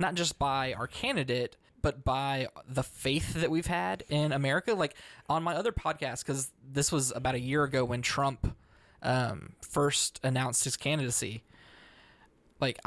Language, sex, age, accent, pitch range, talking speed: English, male, 20-39, American, 125-145 Hz, 160 wpm